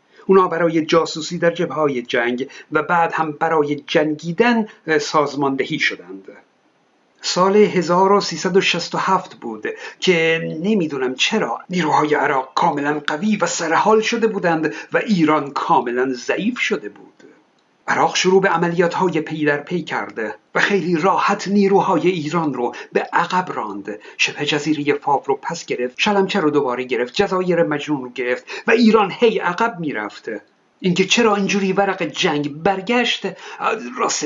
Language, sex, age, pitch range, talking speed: Persian, male, 50-69, 155-205 Hz, 135 wpm